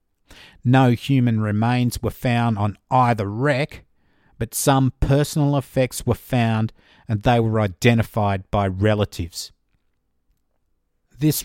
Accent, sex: Australian, male